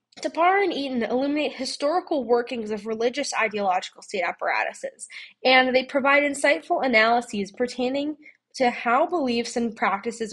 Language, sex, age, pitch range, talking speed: English, female, 10-29, 220-280 Hz, 130 wpm